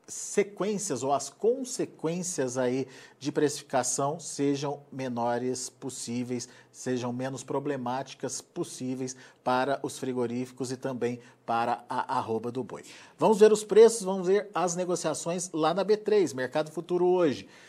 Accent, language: Brazilian, Portuguese